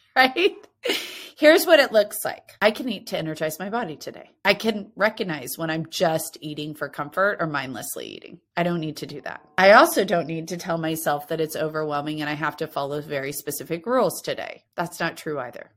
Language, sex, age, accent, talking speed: English, female, 30-49, American, 210 wpm